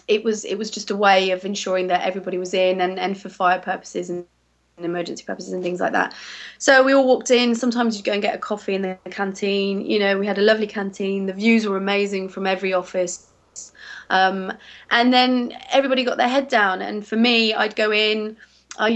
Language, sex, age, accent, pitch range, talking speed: English, female, 20-39, British, 190-220 Hz, 220 wpm